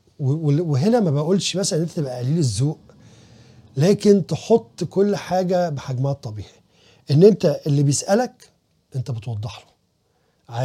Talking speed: 125 wpm